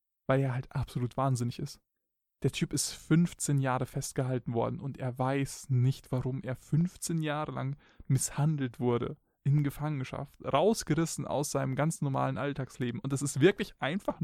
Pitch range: 130-155 Hz